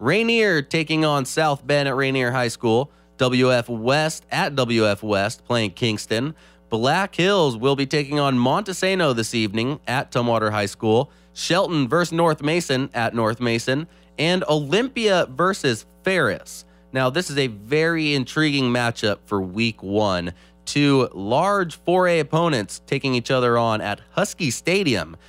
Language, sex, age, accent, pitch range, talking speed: English, male, 20-39, American, 110-150 Hz, 145 wpm